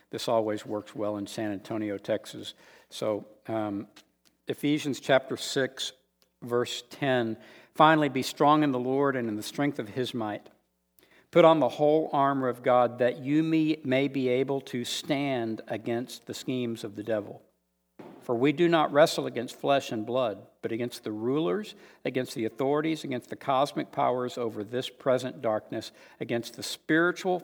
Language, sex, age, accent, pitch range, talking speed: English, male, 60-79, American, 110-140 Hz, 165 wpm